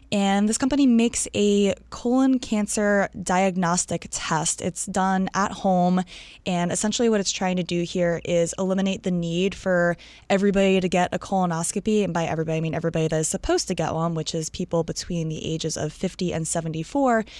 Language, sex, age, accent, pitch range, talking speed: English, female, 20-39, American, 180-230 Hz, 185 wpm